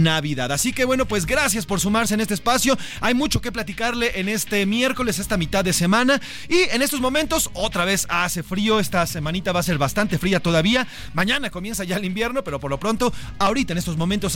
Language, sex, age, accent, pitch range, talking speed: Spanish, male, 40-59, Mexican, 155-215 Hz, 215 wpm